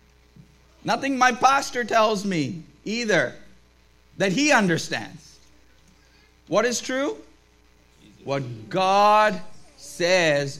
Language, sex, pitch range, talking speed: English, male, 125-205 Hz, 85 wpm